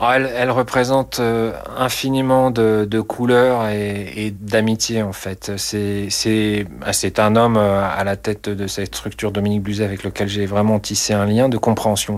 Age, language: 40-59, French